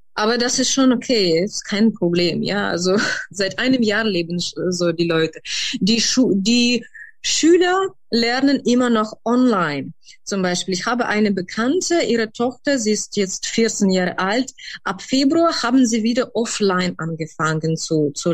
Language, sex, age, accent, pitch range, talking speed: German, female, 20-39, German, 185-260 Hz, 155 wpm